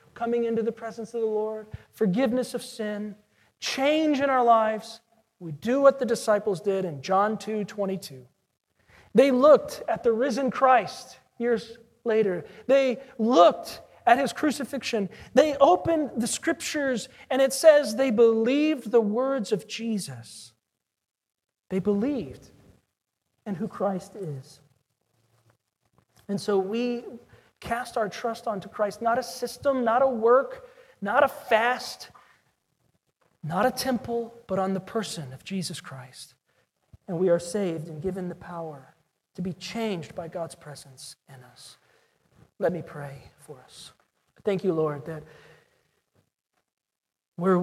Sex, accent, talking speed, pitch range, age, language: male, American, 135 wpm, 170-240 Hz, 40-59, English